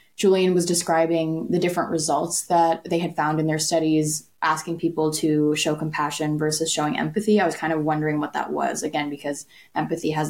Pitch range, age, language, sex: 155-190 Hz, 10-29, English, female